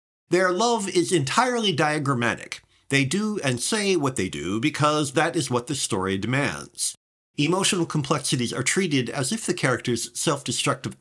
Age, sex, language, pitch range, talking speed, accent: 50-69, male, English, 120-175 Hz, 155 wpm, American